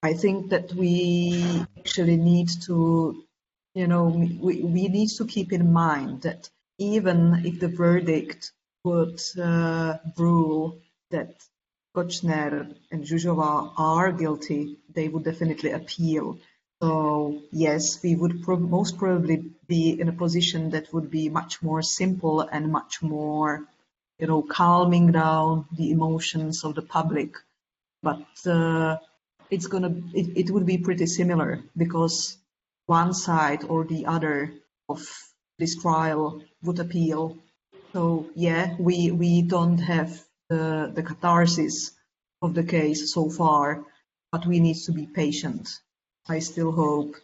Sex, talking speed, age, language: female, 135 wpm, 30-49, English